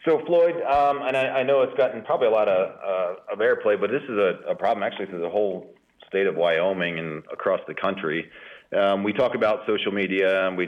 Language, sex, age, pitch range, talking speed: English, male, 40-59, 90-125 Hz, 230 wpm